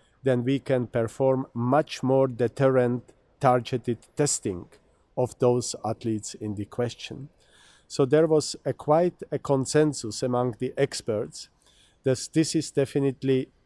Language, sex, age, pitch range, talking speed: English, male, 50-69, 115-140 Hz, 125 wpm